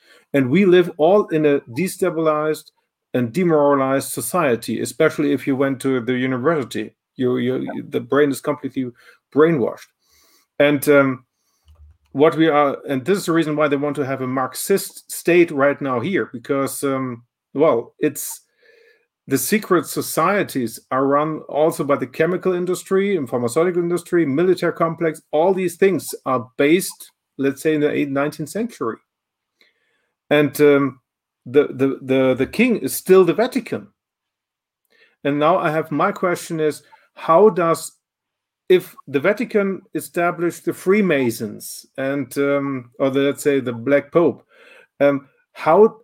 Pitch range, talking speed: 135-175 Hz, 145 wpm